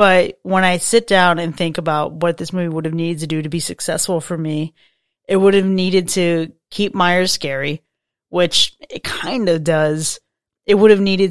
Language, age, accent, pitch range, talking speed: English, 30-49, American, 165-195 Hz, 200 wpm